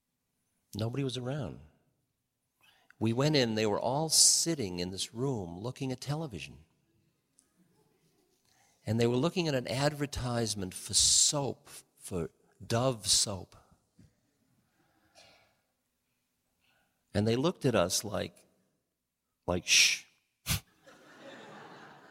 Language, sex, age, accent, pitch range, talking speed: English, male, 50-69, American, 95-135 Hz, 100 wpm